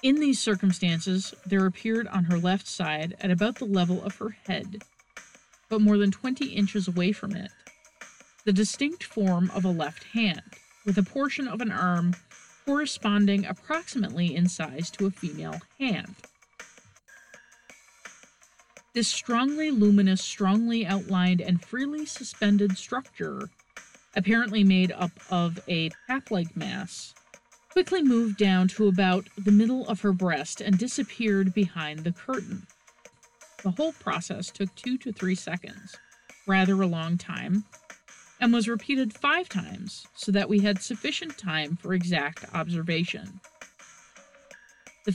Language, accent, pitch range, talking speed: English, American, 185-230 Hz, 135 wpm